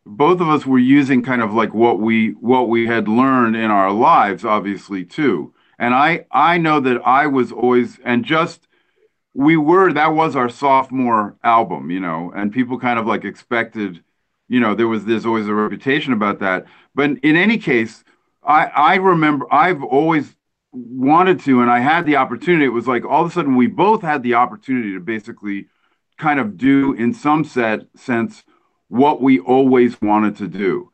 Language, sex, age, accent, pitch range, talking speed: English, male, 40-59, American, 110-145 Hz, 190 wpm